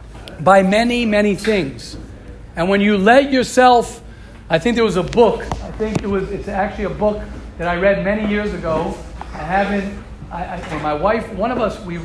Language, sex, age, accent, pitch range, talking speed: English, male, 40-59, American, 175-235 Hz, 195 wpm